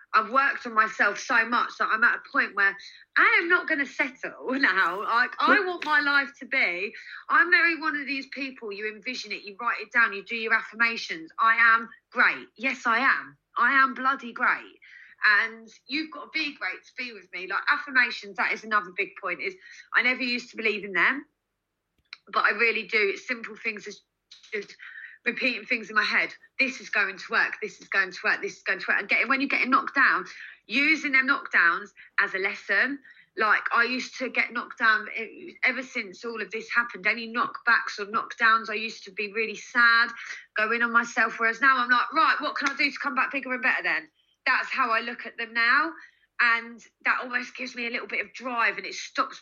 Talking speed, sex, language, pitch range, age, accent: 220 wpm, female, English, 215-275 Hz, 30-49, British